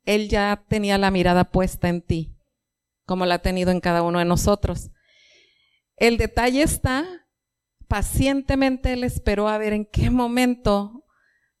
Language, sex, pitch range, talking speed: Spanish, female, 190-250 Hz, 145 wpm